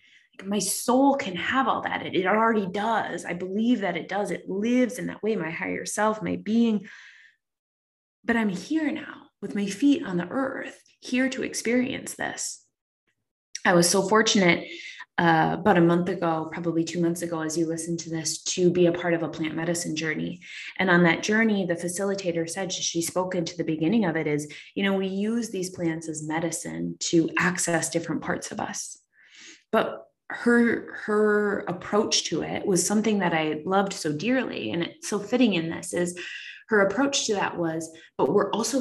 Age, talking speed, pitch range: 20-39, 190 wpm, 165-220 Hz